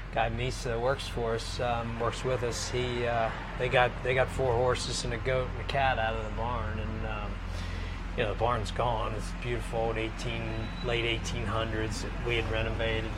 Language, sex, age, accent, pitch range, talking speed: English, male, 30-49, American, 85-120 Hz, 200 wpm